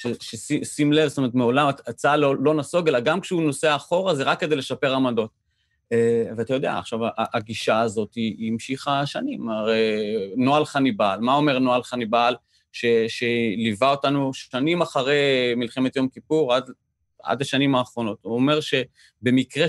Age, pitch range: 30-49, 115-145 Hz